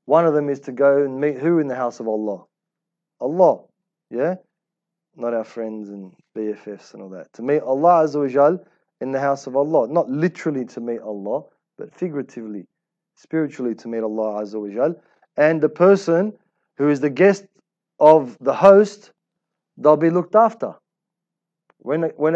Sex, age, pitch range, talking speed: male, 30-49, 120-145 Hz, 160 wpm